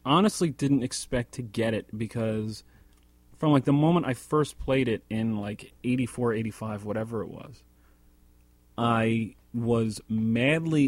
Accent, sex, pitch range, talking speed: American, male, 100-125 Hz, 140 wpm